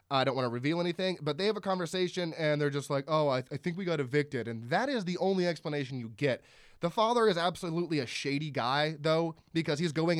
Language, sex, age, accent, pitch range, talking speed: English, male, 20-39, American, 130-170 Hz, 240 wpm